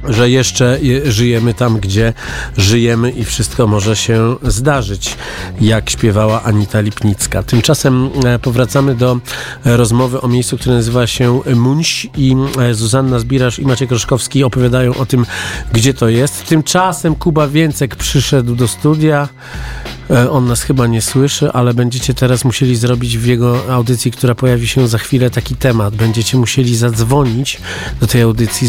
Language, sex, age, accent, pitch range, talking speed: Polish, male, 40-59, native, 115-130 Hz, 145 wpm